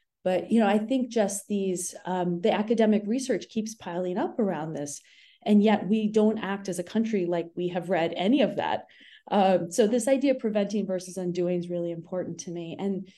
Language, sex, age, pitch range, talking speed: English, female, 30-49, 175-215 Hz, 205 wpm